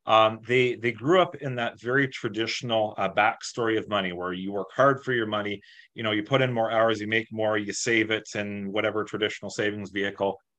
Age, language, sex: 30-49, English, male